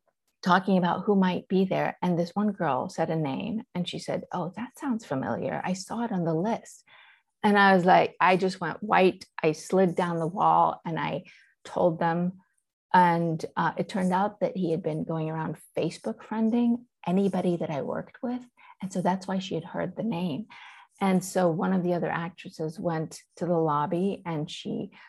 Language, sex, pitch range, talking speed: English, female, 170-205 Hz, 200 wpm